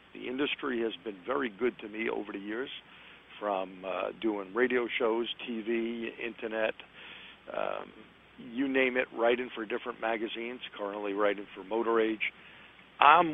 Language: English